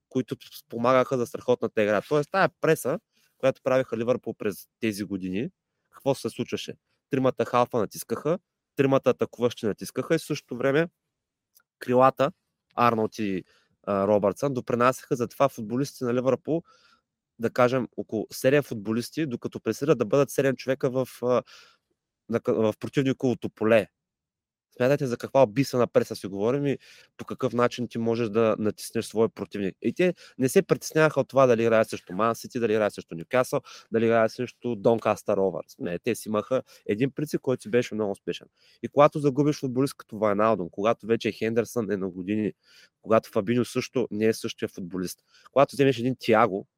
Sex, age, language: male, 30-49, Bulgarian